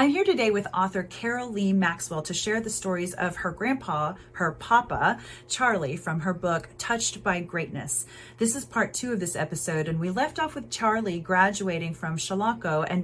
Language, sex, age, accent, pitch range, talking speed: English, female, 30-49, American, 160-200 Hz, 190 wpm